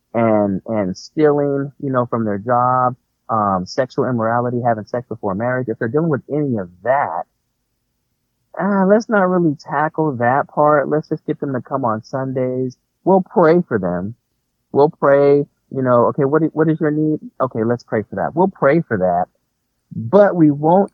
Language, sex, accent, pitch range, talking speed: English, male, American, 115-150 Hz, 180 wpm